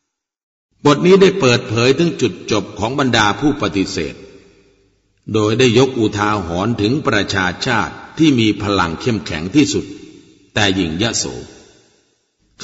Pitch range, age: 100-130 Hz, 60-79